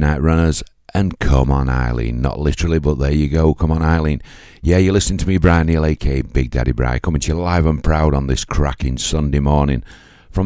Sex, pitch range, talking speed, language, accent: male, 65-80 Hz, 220 wpm, English, British